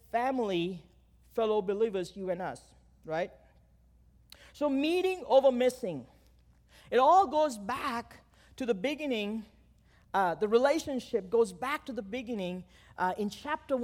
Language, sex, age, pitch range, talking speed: English, male, 40-59, 205-275 Hz, 125 wpm